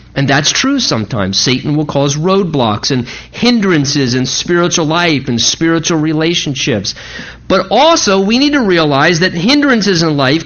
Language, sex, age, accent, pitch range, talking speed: English, male, 50-69, American, 150-225 Hz, 150 wpm